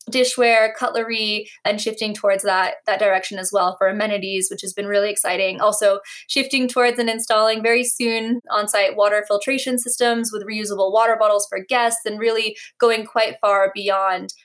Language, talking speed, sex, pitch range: English, 165 wpm, female, 205-240 Hz